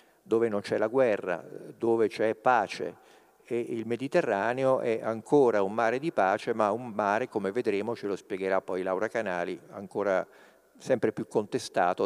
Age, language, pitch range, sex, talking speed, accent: 50-69, Italian, 110-140 Hz, male, 160 wpm, native